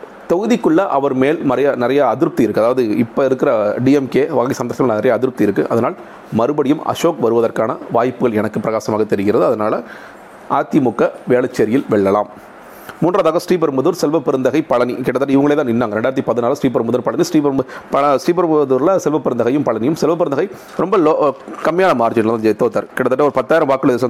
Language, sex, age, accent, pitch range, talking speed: Tamil, male, 40-59, native, 115-150 Hz, 140 wpm